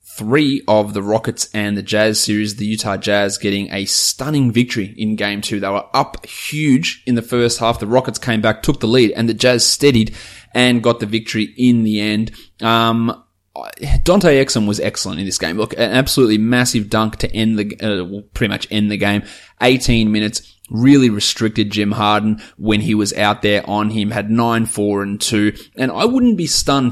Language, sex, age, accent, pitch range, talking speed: English, male, 20-39, Australian, 100-115 Hz, 200 wpm